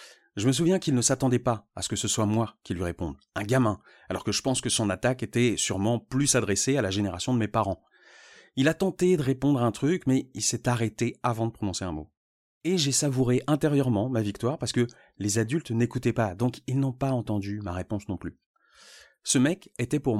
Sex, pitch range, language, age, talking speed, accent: male, 110-140 Hz, French, 30-49, 225 wpm, French